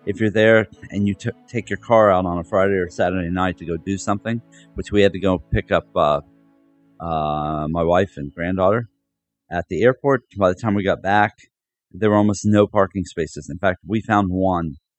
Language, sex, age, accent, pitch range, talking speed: English, male, 40-59, American, 85-105 Hz, 210 wpm